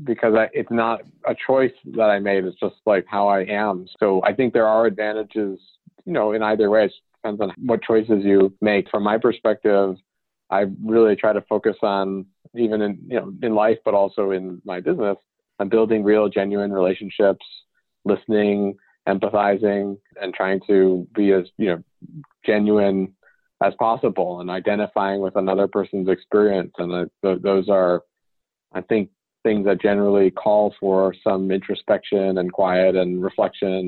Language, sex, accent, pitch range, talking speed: English, male, American, 95-105 Hz, 165 wpm